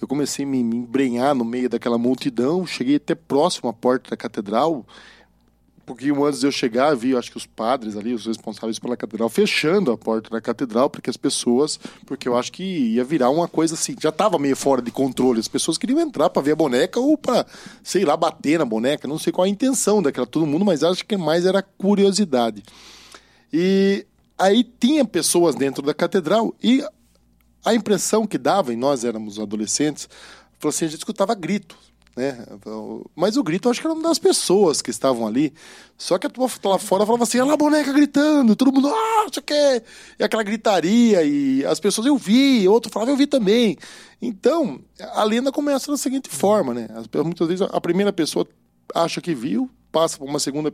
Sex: male